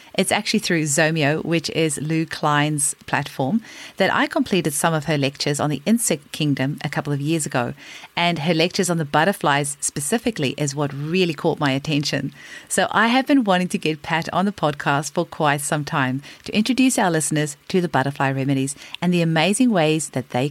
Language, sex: English, female